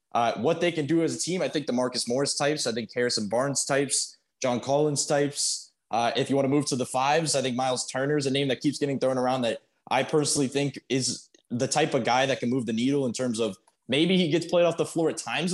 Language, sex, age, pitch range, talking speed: English, male, 20-39, 125-155 Hz, 265 wpm